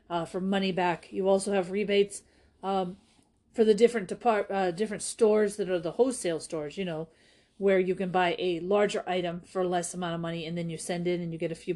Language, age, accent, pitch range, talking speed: English, 40-59, American, 175-210 Hz, 225 wpm